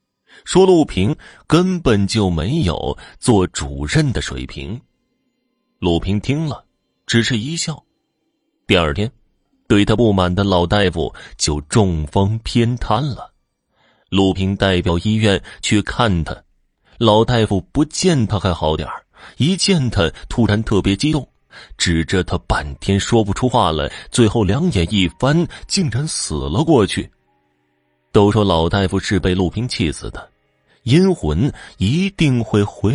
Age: 30-49